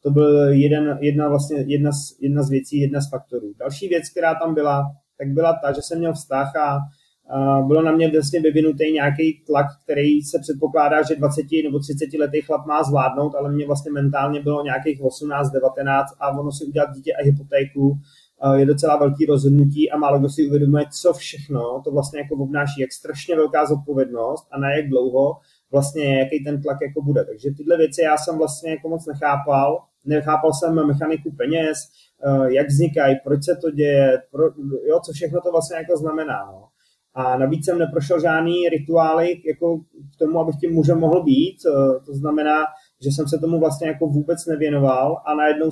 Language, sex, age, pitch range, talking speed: Czech, male, 30-49, 140-160 Hz, 190 wpm